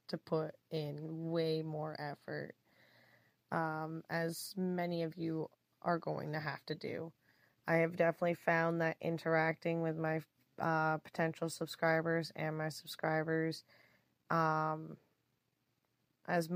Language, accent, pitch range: English, American, 155-170 Hz